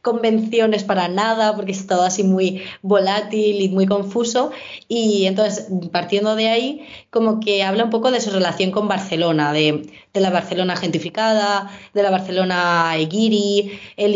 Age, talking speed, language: 20-39, 155 wpm, Spanish